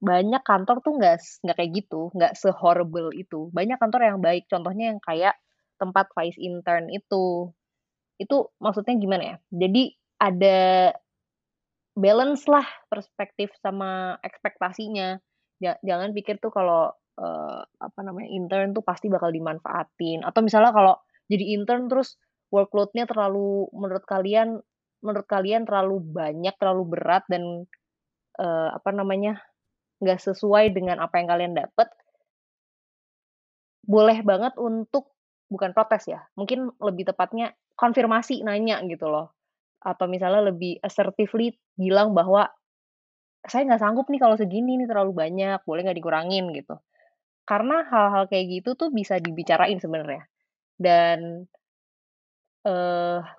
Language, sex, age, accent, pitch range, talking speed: Indonesian, female, 20-39, native, 180-225 Hz, 125 wpm